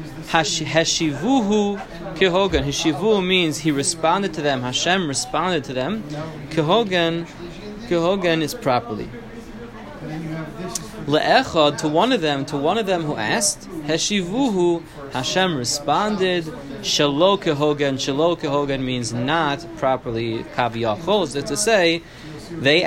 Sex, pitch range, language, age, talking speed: male, 135-170 Hz, English, 20-39, 115 wpm